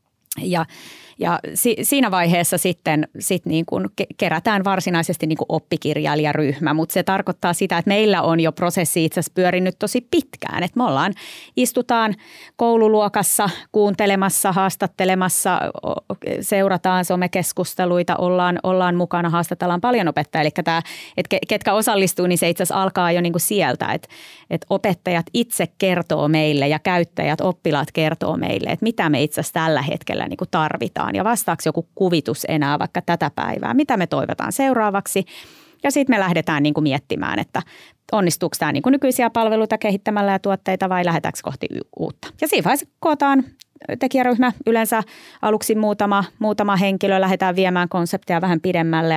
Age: 30-49